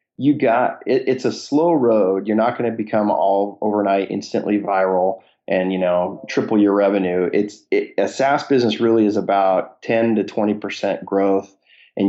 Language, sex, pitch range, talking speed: English, male, 95-105 Hz, 180 wpm